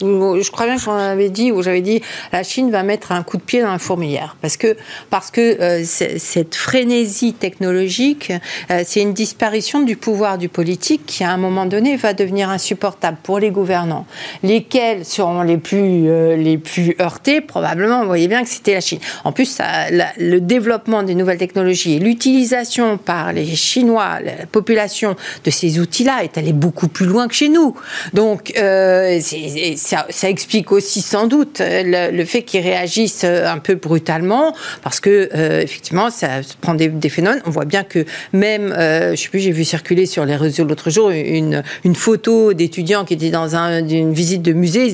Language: French